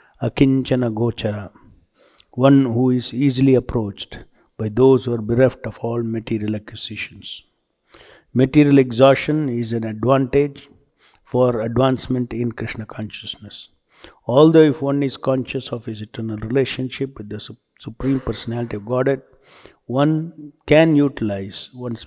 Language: English